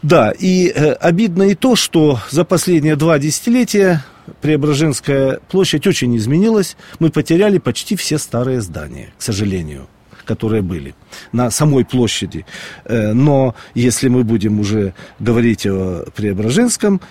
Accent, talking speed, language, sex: native, 130 wpm, Russian, male